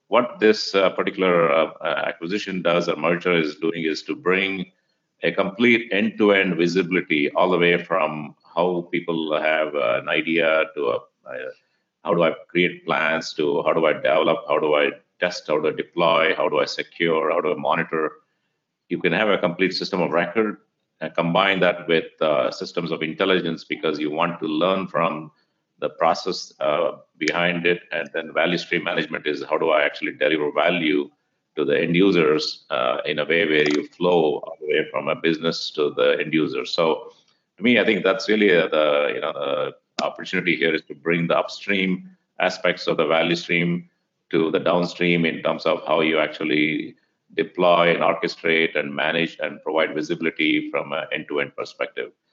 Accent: Indian